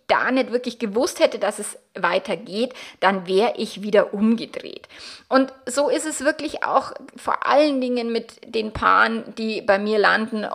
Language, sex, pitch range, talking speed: German, female, 210-265 Hz, 165 wpm